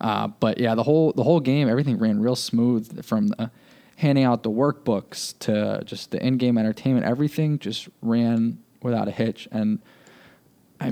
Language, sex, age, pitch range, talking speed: English, male, 20-39, 110-125 Hz, 170 wpm